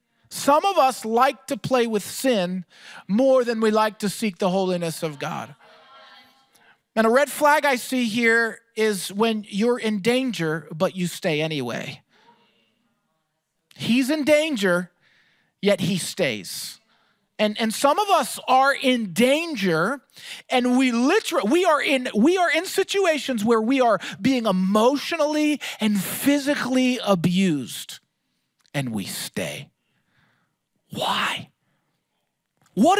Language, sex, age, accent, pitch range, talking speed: English, male, 40-59, American, 175-260 Hz, 125 wpm